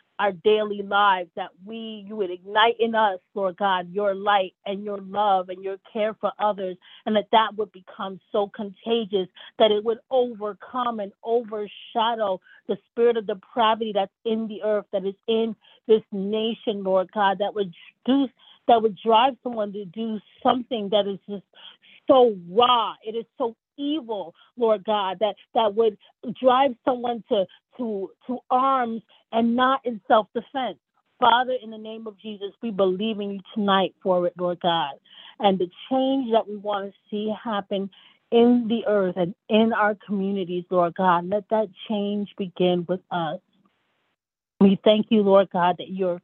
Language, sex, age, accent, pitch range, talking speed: English, female, 30-49, American, 190-225 Hz, 165 wpm